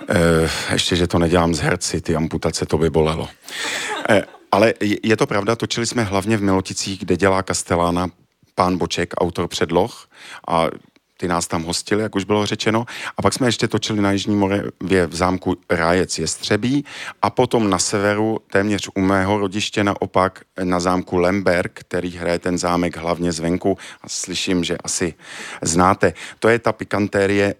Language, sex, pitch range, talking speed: Czech, male, 90-120 Hz, 170 wpm